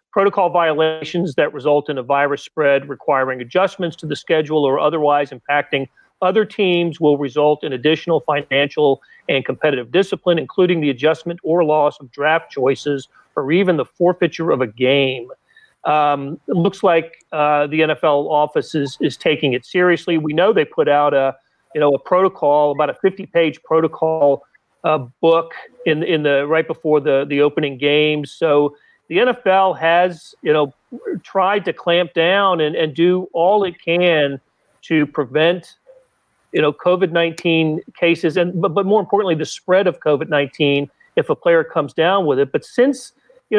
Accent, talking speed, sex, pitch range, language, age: American, 170 wpm, male, 145-180 Hz, English, 40-59